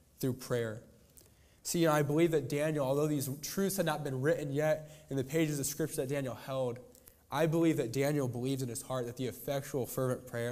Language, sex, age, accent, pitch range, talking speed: English, male, 20-39, American, 110-150 Hz, 205 wpm